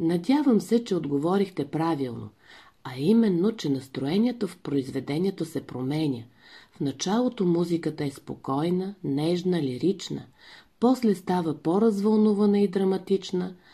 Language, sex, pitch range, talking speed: Bulgarian, female, 140-210 Hz, 115 wpm